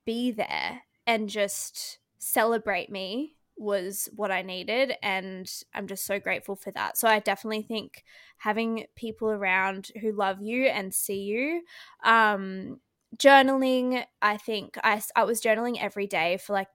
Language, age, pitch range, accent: English, 20-39, 195-240 Hz, Australian